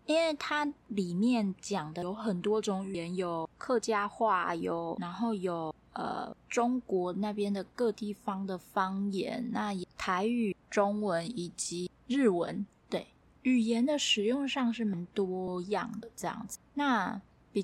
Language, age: Chinese, 20-39